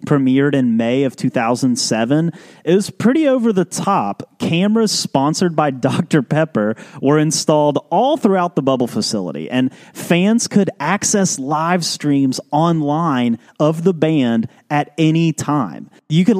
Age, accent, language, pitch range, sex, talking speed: 30-49, American, English, 125-170 Hz, male, 140 wpm